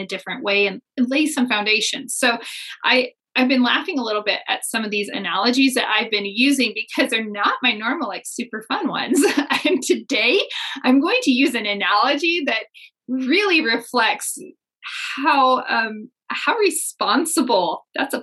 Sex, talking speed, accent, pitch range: female, 160 wpm, American, 205-275 Hz